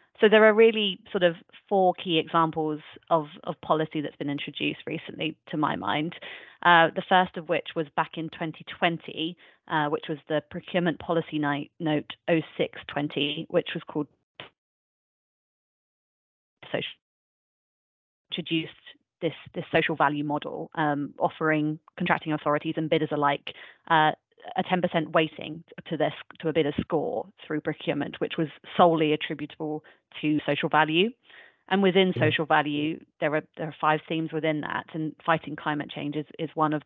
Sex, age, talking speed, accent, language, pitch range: female, 30-49, 150 wpm, British, English, 150-175 Hz